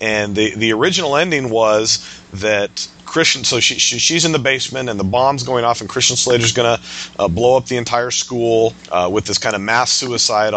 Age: 40-59